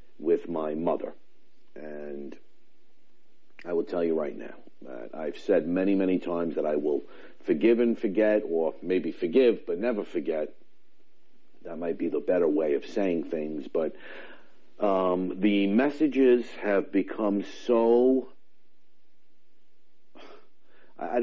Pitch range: 85-135 Hz